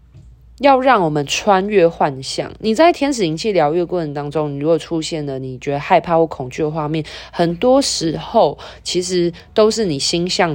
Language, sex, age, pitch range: Chinese, female, 20-39, 145-195 Hz